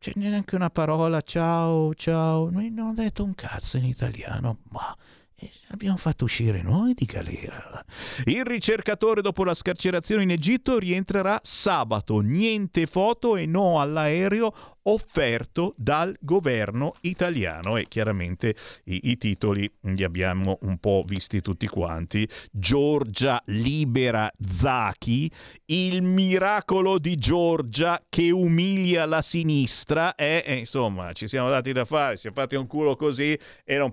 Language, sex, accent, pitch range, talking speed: Italian, male, native, 110-165 Hz, 140 wpm